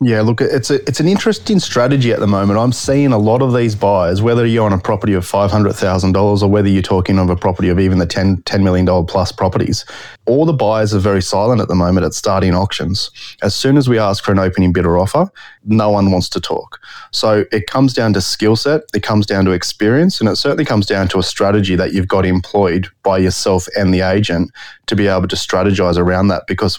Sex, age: male, 20-39